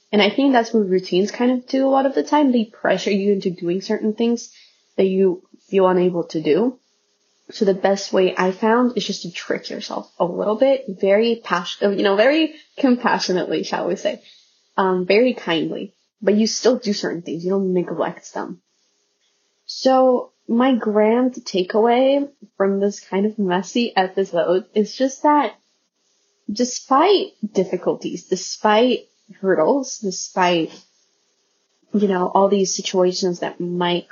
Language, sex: English, female